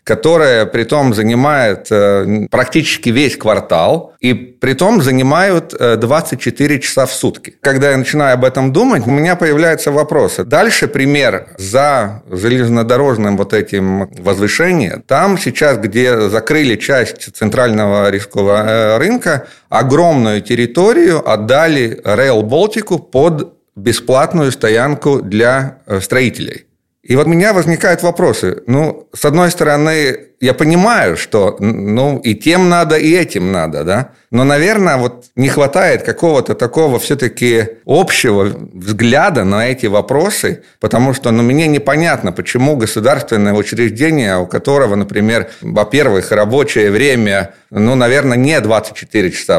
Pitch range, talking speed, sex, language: 110-150 Hz, 125 wpm, male, Russian